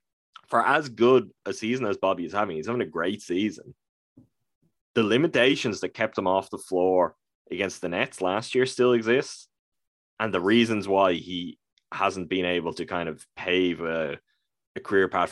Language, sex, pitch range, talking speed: English, male, 90-120 Hz, 175 wpm